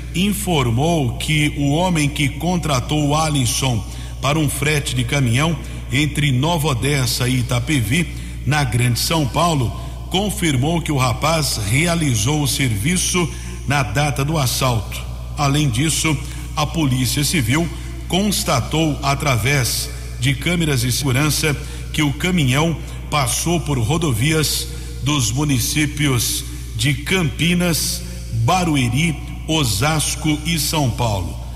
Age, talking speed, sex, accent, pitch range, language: 60-79, 110 wpm, male, Brazilian, 125-150 Hz, Portuguese